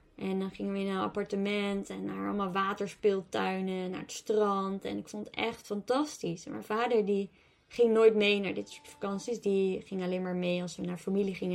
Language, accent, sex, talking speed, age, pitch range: Dutch, Dutch, female, 215 wpm, 20-39, 195-260 Hz